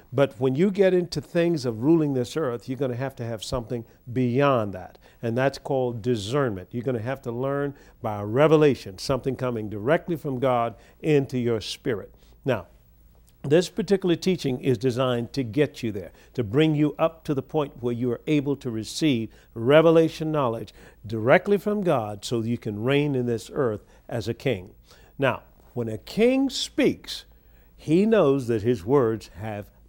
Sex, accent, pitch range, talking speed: male, American, 115-150 Hz, 175 wpm